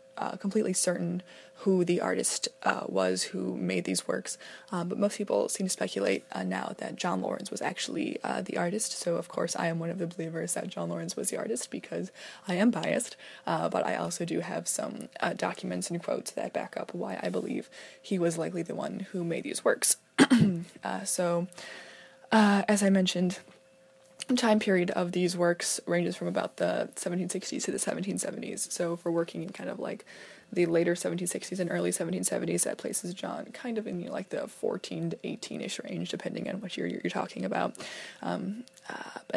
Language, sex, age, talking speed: English, female, 20-39, 195 wpm